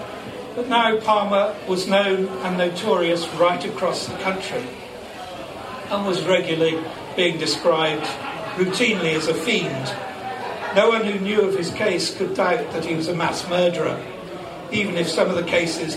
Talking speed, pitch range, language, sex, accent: 155 wpm, 170-205 Hz, English, male, British